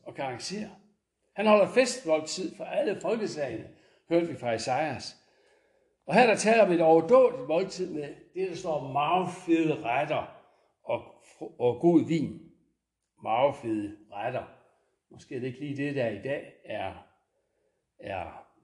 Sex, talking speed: male, 150 wpm